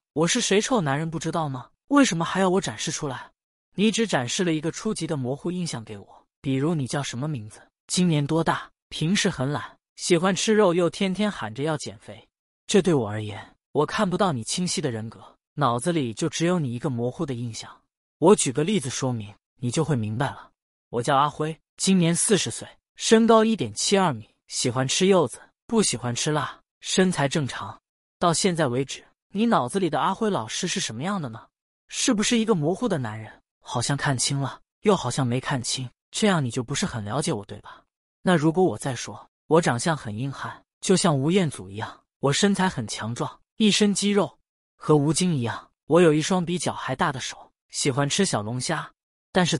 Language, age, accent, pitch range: Chinese, 20-39, native, 125-185 Hz